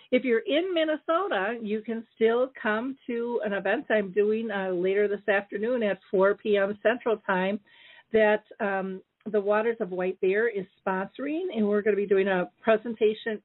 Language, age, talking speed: English, 50-69, 170 wpm